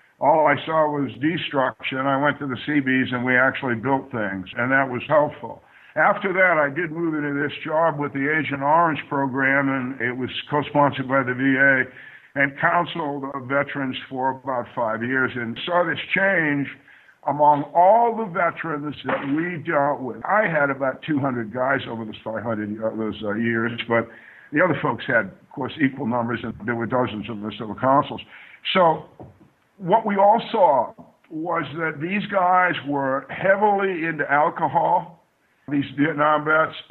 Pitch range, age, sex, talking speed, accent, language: 130-160 Hz, 60-79, male, 165 wpm, American, English